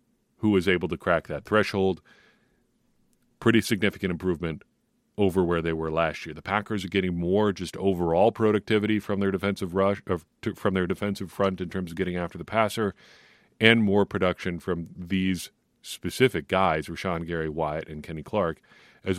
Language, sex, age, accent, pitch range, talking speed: English, male, 40-59, American, 85-105 Hz, 165 wpm